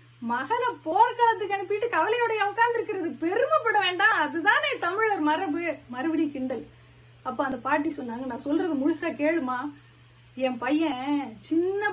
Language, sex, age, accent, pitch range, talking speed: Tamil, female, 30-49, native, 290-410 Hz, 110 wpm